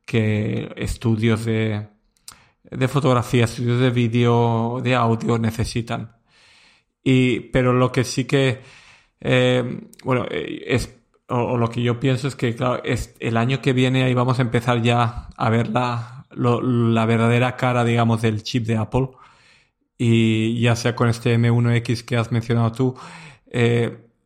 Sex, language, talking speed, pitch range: male, Spanish, 155 wpm, 115-125 Hz